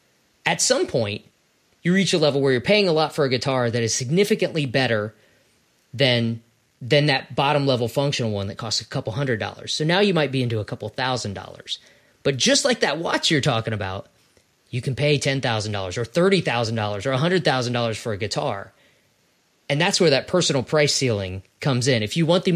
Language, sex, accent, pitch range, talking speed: English, male, American, 120-150 Hz, 195 wpm